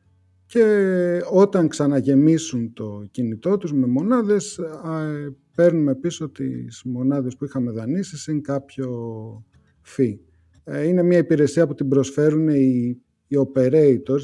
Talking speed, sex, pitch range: 120 wpm, male, 115-155 Hz